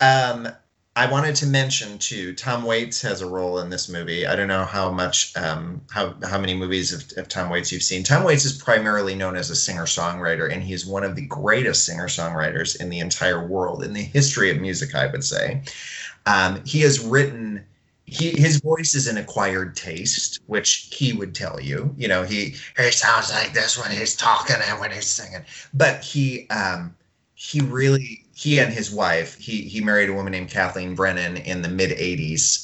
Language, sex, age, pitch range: English, male, 30-49, 90-135 Hz